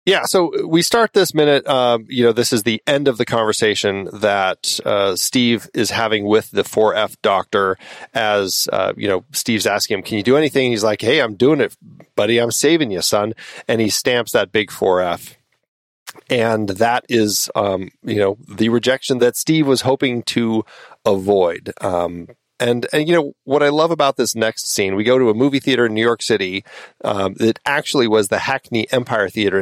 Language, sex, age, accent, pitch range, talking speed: English, male, 40-59, American, 105-135 Hz, 195 wpm